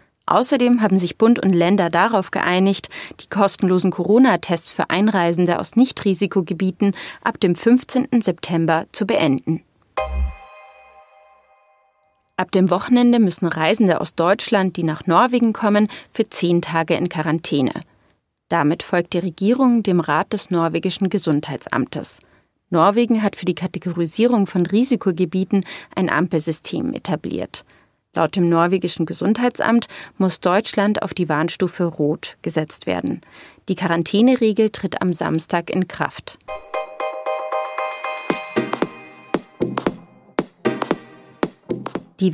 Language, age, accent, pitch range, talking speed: German, 30-49, German, 170-210 Hz, 110 wpm